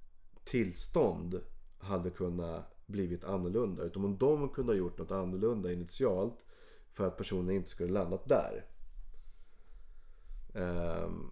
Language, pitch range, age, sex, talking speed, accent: Swedish, 90-105 Hz, 30-49, male, 115 wpm, native